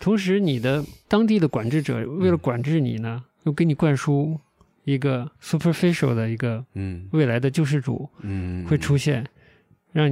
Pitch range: 120-155 Hz